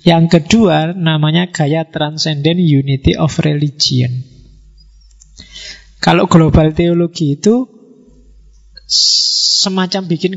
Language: Indonesian